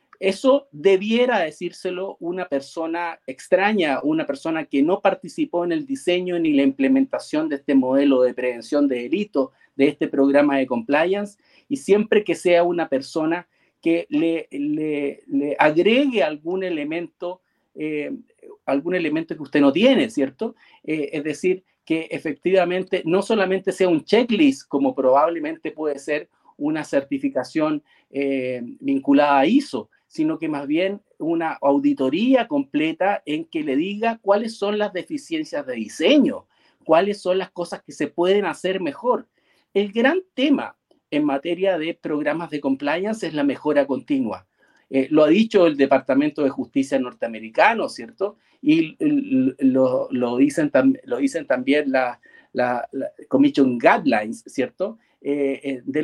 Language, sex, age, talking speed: Spanish, male, 40-59, 145 wpm